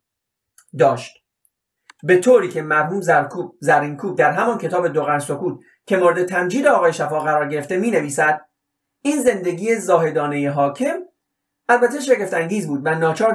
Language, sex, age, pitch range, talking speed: Persian, male, 30-49, 160-235 Hz, 145 wpm